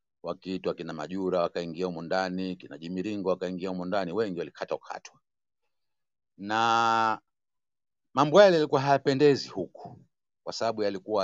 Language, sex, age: Swahili, male, 50-69